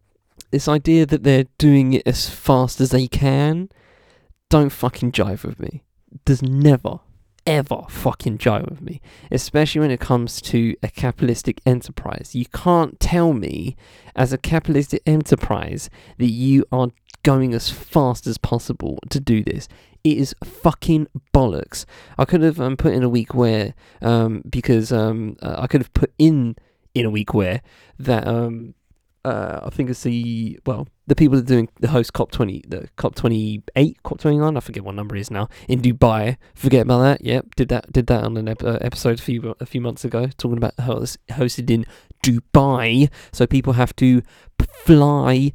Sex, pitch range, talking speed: male, 115-145 Hz, 180 wpm